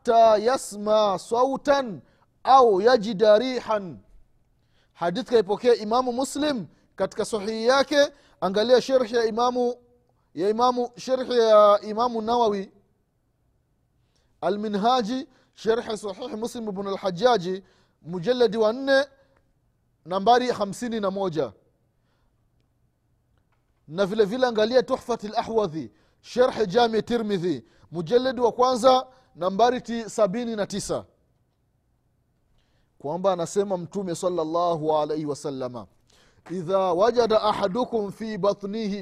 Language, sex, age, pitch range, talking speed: Swahili, male, 30-49, 175-245 Hz, 80 wpm